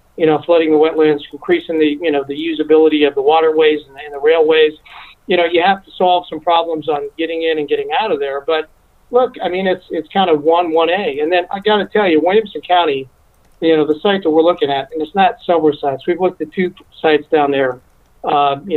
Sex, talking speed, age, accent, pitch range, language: male, 245 wpm, 40-59, American, 145-180 Hz, English